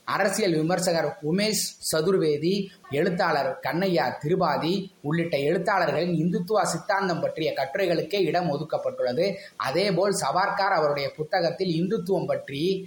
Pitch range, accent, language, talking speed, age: 150-195 Hz, native, Tamil, 100 wpm, 20-39